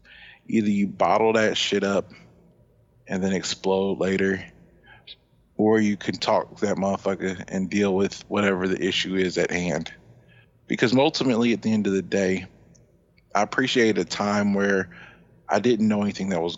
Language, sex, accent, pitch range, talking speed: English, male, American, 95-110 Hz, 165 wpm